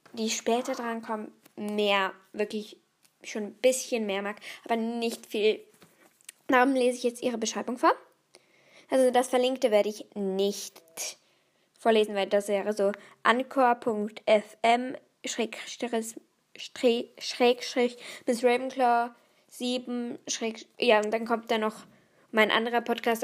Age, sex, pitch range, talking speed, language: 10-29, female, 220-275 Hz, 120 wpm, German